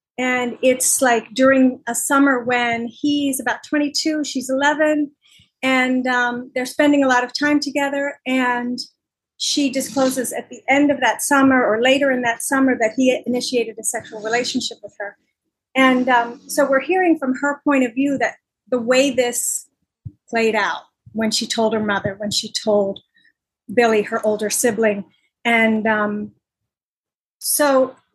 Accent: American